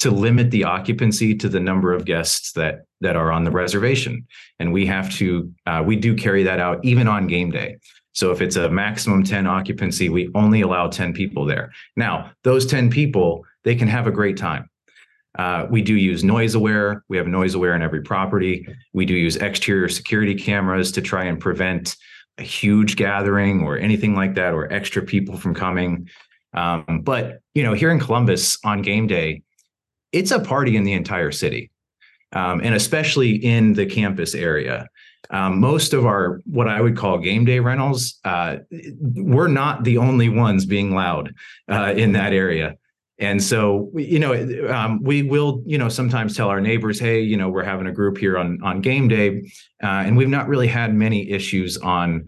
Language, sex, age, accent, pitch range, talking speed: English, male, 30-49, American, 95-115 Hz, 195 wpm